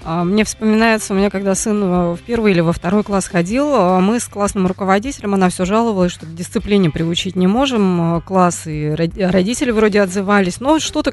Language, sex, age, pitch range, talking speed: Russian, female, 20-39, 190-235 Hz, 175 wpm